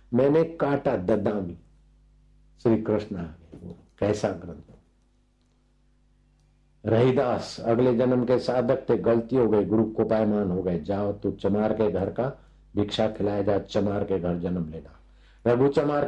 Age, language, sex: 50-69, Hindi, male